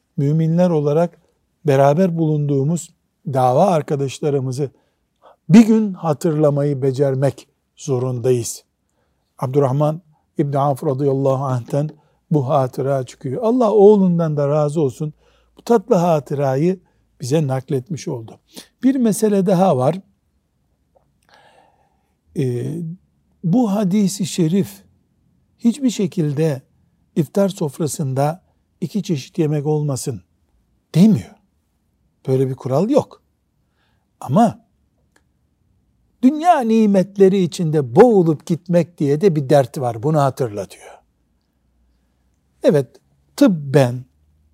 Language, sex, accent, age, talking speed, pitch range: Turkish, male, native, 60-79, 90 wpm, 135-185 Hz